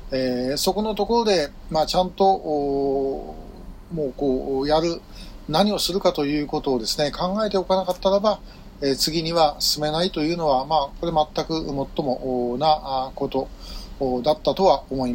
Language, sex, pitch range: Japanese, male, 130-180 Hz